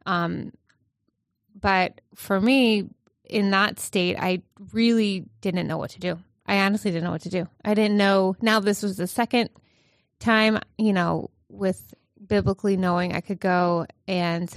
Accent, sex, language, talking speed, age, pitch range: American, female, English, 160 wpm, 20-39, 175-205 Hz